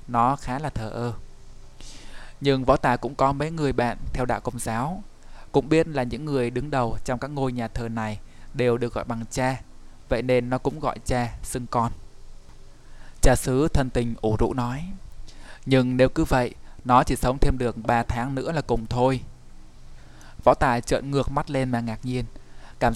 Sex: male